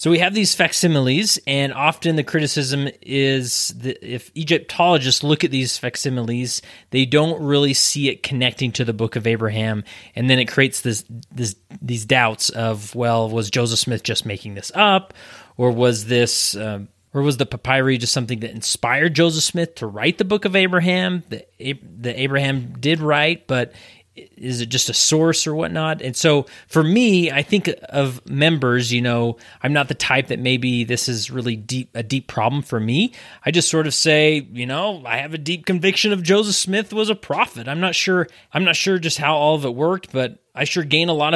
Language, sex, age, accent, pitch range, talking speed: English, male, 30-49, American, 120-165 Hz, 200 wpm